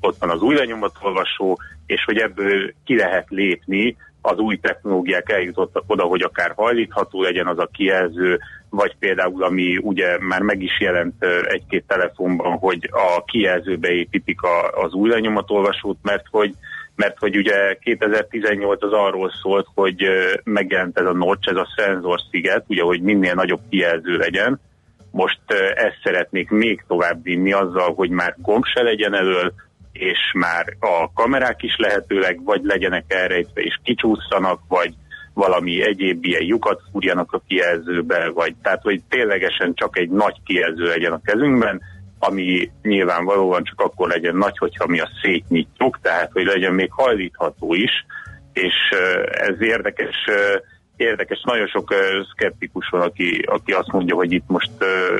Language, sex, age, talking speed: Hungarian, male, 30-49, 150 wpm